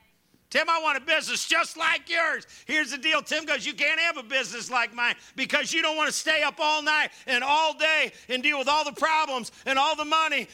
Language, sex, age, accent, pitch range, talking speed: English, male, 50-69, American, 210-295 Hz, 240 wpm